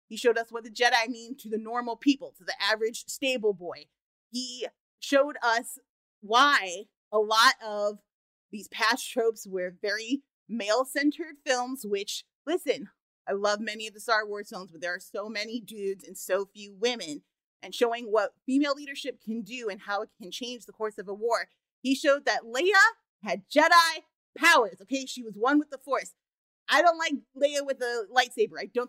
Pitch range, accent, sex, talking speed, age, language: 210-270 Hz, American, female, 185 wpm, 30-49, English